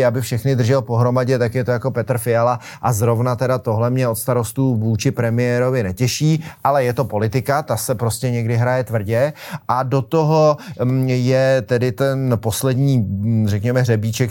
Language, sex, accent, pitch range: Czech, male, native, 115-130 Hz